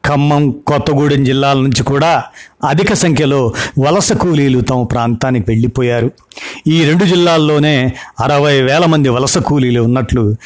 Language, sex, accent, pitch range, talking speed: Telugu, male, native, 125-145 Hz, 120 wpm